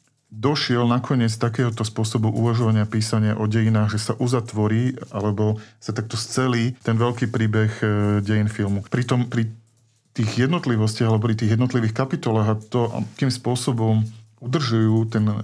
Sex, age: male, 40-59